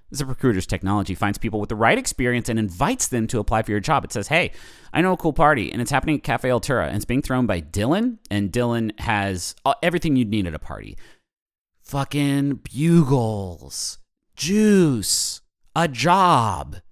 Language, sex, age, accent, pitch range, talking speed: English, male, 30-49, American, 100-140 Hz, 185 wpm